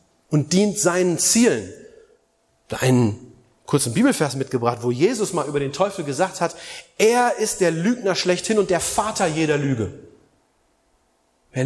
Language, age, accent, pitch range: German, 30-49, German, 145-205 Hz